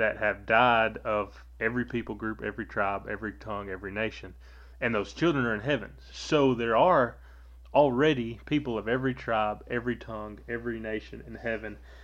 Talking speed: 165 wpm